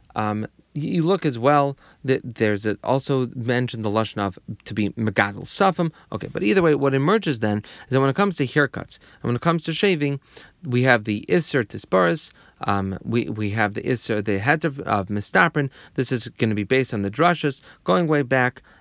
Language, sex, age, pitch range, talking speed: English, male, 30-49, 105-140 Hz, 195 wpm